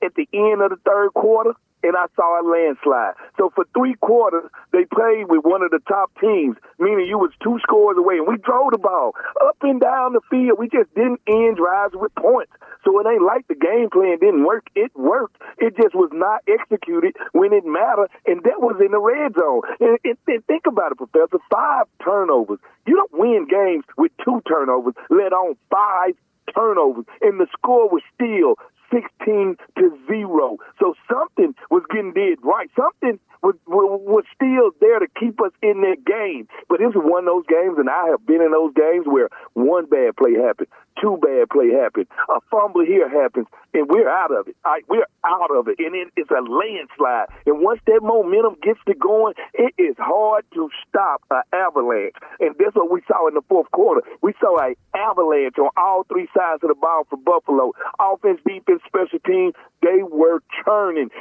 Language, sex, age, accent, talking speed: English, male, 50-69, American, 200 wpm